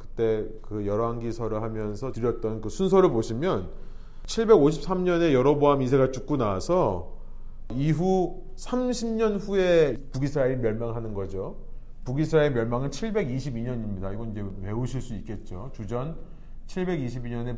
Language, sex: Korean, male